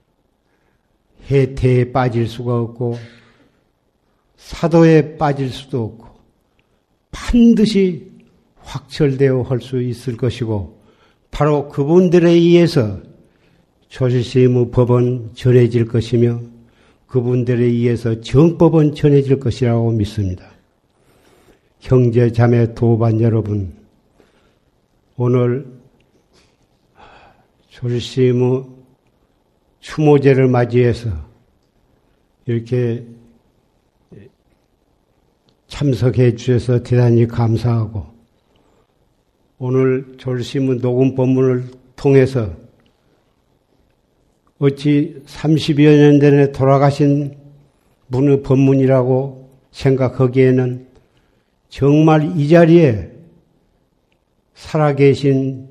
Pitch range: 120-140 Hz